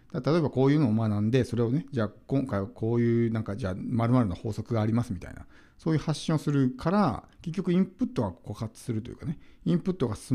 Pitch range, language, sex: 110-170 Hz, Japanese, male